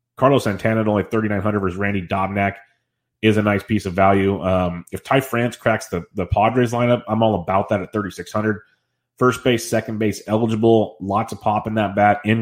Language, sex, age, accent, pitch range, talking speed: English, male, 30-49, American, 95-110 Hz, 215 wpm